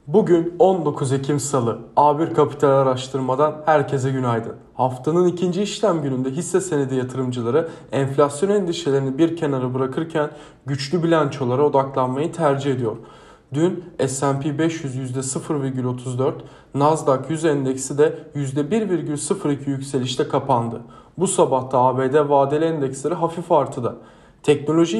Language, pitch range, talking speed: Turkish, 135-170 Hz, 115 wpm